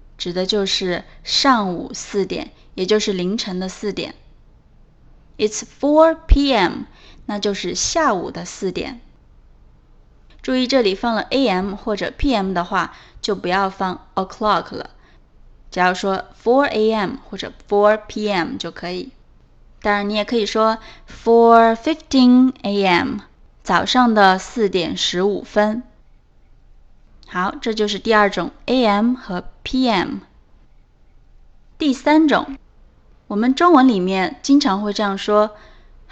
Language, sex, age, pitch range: Chinese, female, 20-39, 195-260 Hz